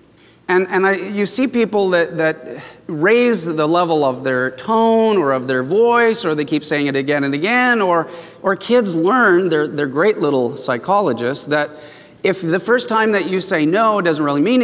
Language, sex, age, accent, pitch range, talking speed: English, male, 40-59, American, 145-200 Hz, 190 wpm